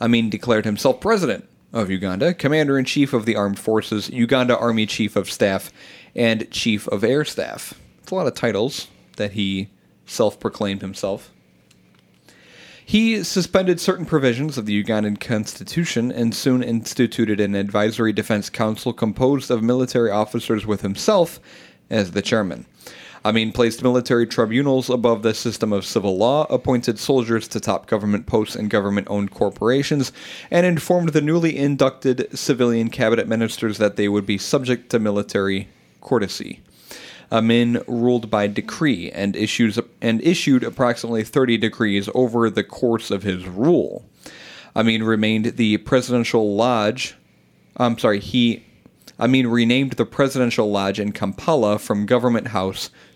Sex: male